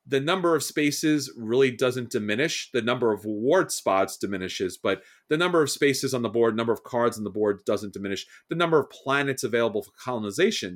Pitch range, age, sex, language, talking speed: 115-155 Hz, 30-49, male, English, 200 wpm